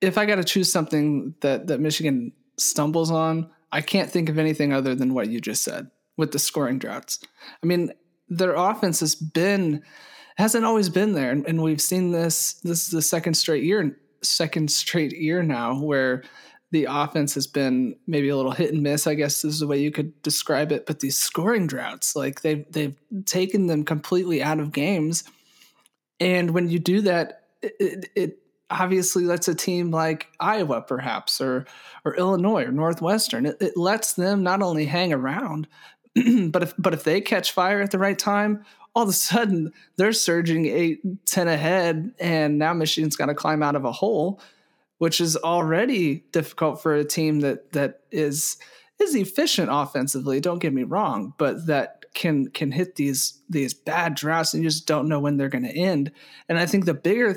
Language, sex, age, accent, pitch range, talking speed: English, male, 20-39, American, 150-185 Hz, 190 wpm